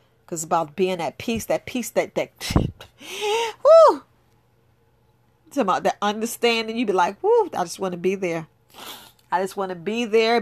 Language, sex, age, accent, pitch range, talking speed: English, female, 40-59, American, 180-245 Hz, 175 wpm